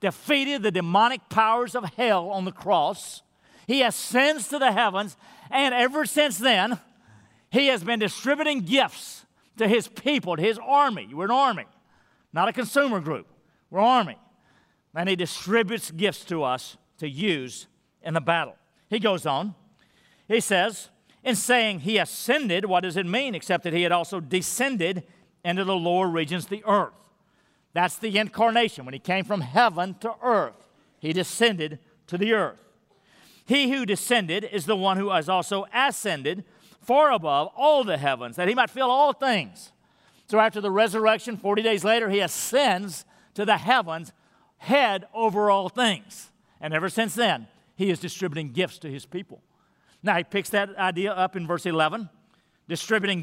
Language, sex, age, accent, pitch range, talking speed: English, male, 50-69, American, 180-230 Hz, 170 wpm